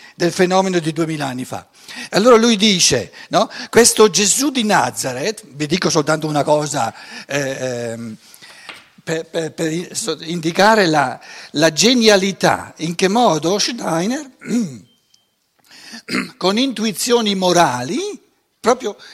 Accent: native